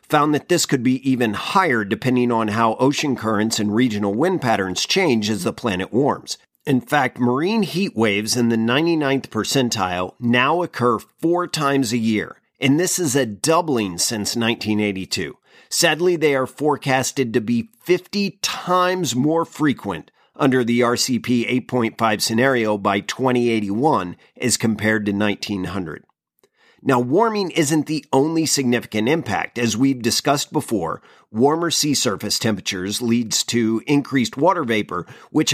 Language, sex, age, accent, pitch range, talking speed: English, male, 40-59, American, 110-150 Hz, 145 wpm